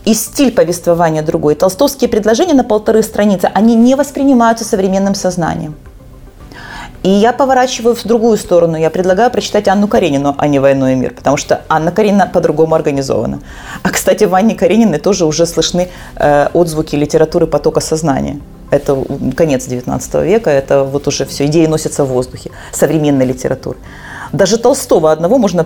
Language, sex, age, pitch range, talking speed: Ukrainian, female, 30-49, 155-205 Hz, 155 wpm